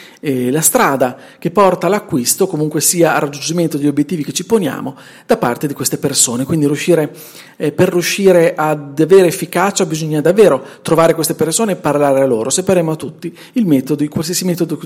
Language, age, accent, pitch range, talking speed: Italian, 40-59, native, 150-195 Hz, 180 wpm